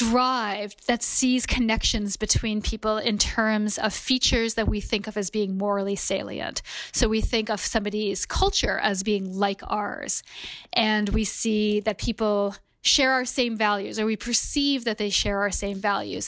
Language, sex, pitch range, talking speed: English, female, 205-250 Hz, 170 wpm